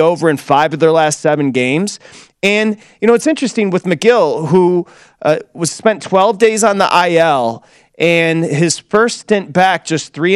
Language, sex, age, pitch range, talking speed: English, male, 30-49, 145-185 Hz, 180 wpm